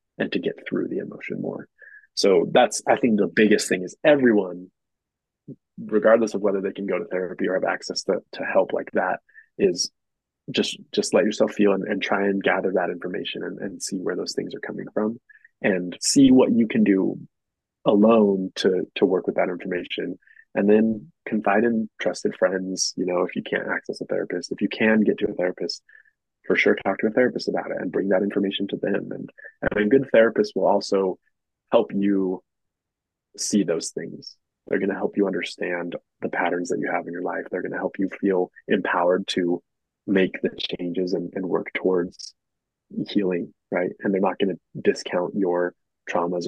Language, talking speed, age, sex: English, 195 wpm, 20-39, male